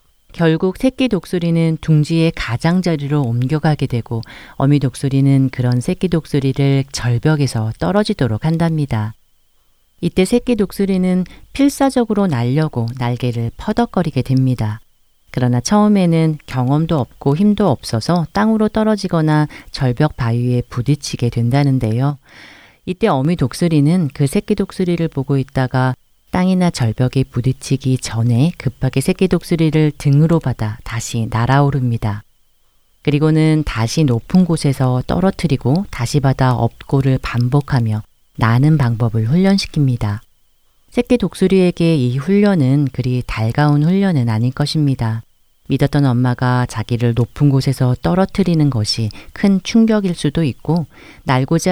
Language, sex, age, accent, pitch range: Korean, female, 40-59, native, 125-170 Hz